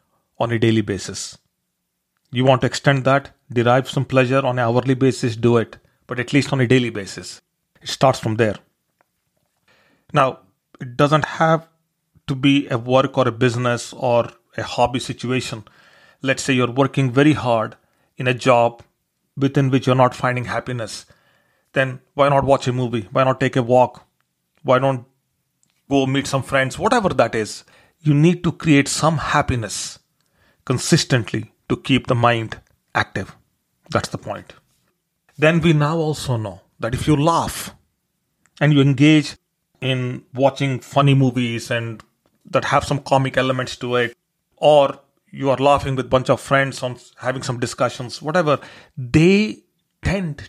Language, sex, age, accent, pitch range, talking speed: English, male, 40-59, Indian, 120-140 Hz, 160 wpm